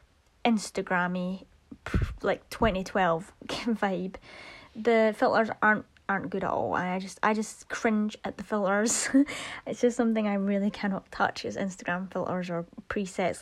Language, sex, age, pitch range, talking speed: English, female, 20-39, 195-240 Hz, 140 wpm